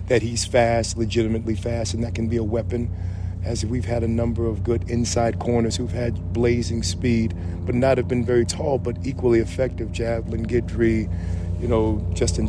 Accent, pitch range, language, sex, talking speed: American, 90-120 Hz, English, male, 185 wpm